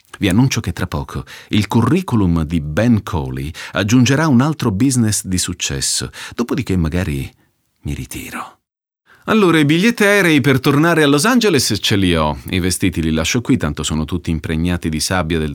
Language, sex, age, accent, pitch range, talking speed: Italian, male, 40-59, native, 85-130 Hz, 170 wpm